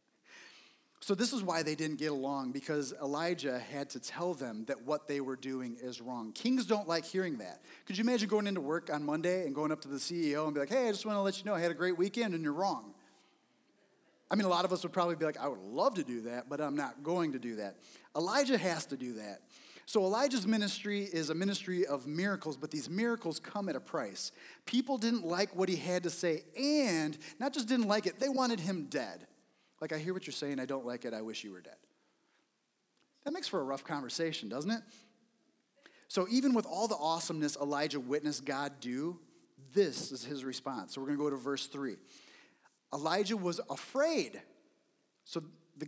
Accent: American